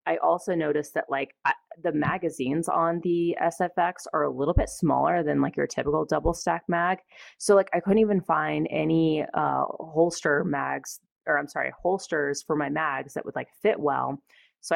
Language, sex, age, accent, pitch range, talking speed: English, female, 30-49, American, 145-170 Hz, 185 wpm